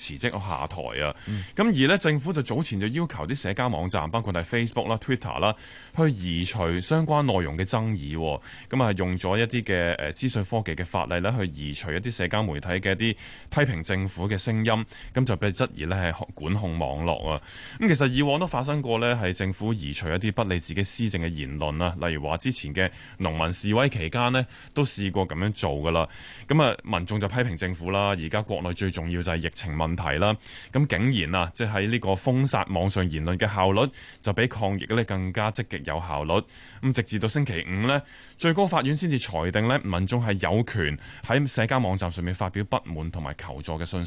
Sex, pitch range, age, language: male, 85-120 Hz, 20-39, Chinese